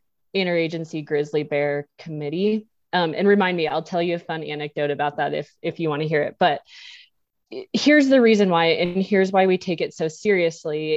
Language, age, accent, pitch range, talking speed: English, 20-39, American, 165-200 Hz, 195 wpm